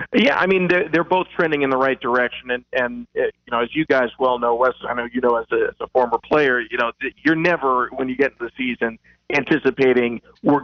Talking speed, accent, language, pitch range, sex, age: 245 wpm, American, English, 125-145 Hz, male, 40-59